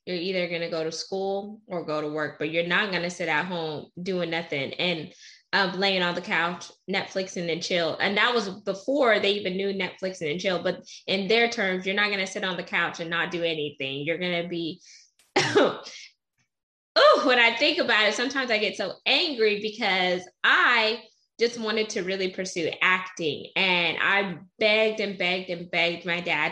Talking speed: 200 wpm